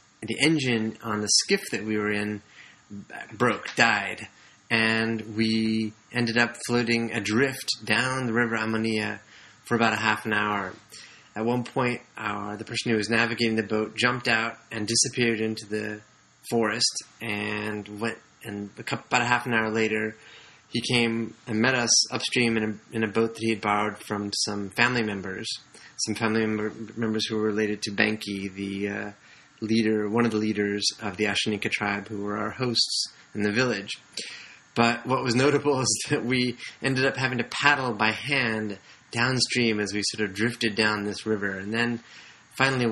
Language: English